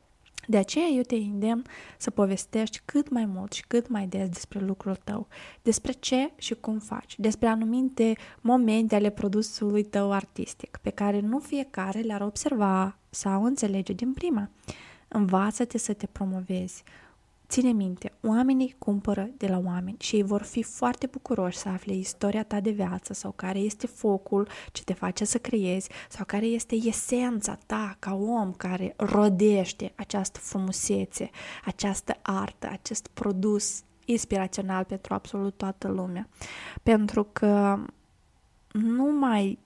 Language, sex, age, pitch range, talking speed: Romanian, female, 20-39, 190-225 Hz, 145 wpm